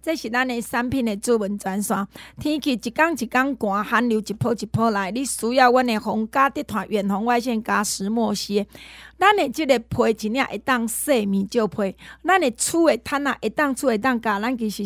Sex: female